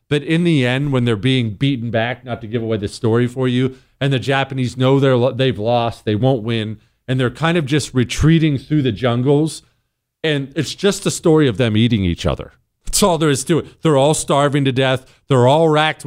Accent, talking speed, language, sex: American, 225 wpm, English, male